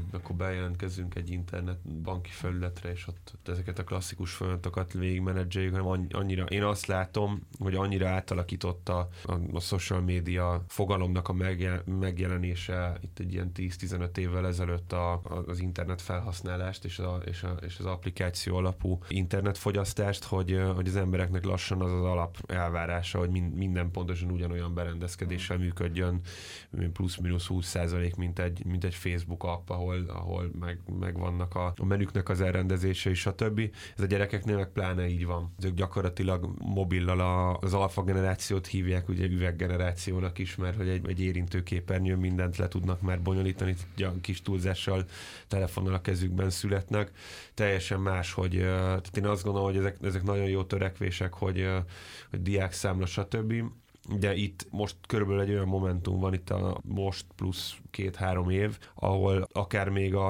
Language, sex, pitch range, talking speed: Hungarian, male, 90-95 Hz, 150 wpm